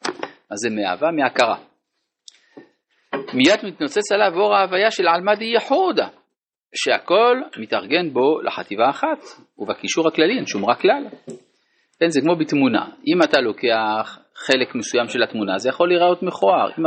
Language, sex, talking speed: Hebrew, male, 135 wpm